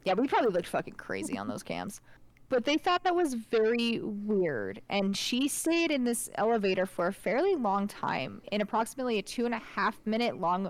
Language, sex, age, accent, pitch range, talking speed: English, female, 20-39, American, 190-240 Hz, 200 wpm